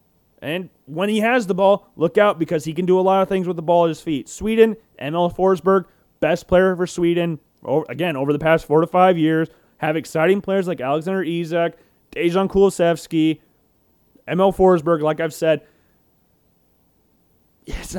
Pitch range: 155-195 Hz